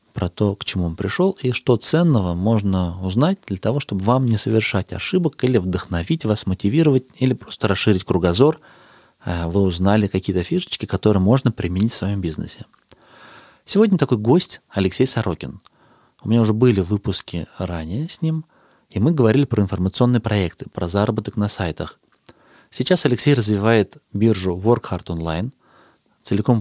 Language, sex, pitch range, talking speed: Russian, male, 95-125 Hz, 150 wpm